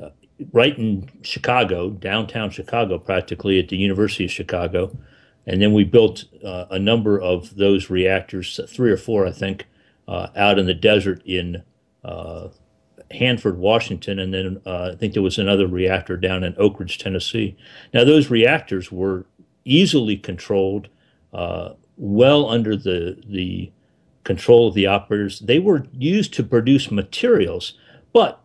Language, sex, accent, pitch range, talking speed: English, male, American, 95-115 Hz, 150 wpm